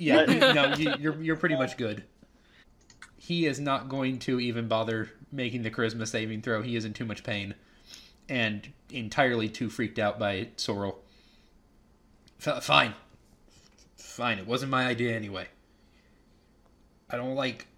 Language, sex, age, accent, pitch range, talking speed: English, male, 20-39, American, 100-115 Hz, 145 wpm